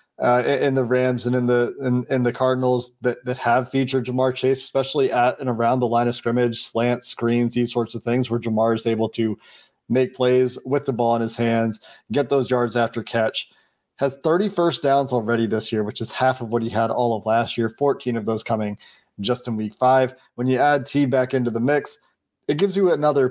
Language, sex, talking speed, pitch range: English, male, 225 wpm, 115-130 Hz